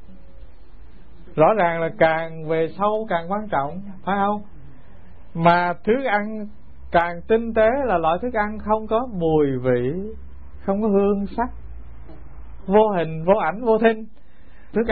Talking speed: 145 wpm